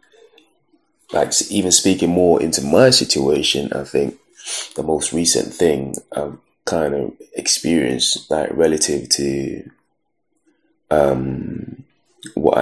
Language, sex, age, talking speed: English, male, 20-39, 105 wpm